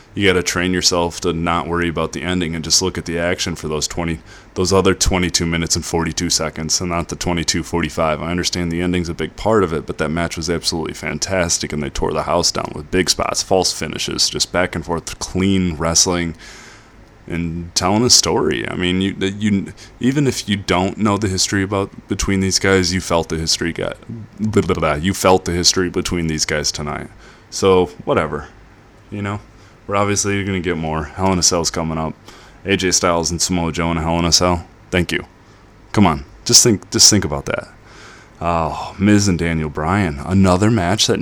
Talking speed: 200 wpm